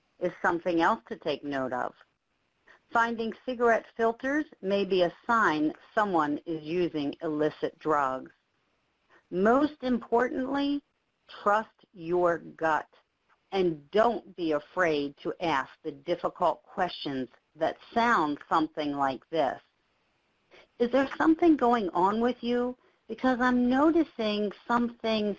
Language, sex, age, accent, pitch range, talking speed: English, female, 50-69, American, 165-235 Hz, 115 wpm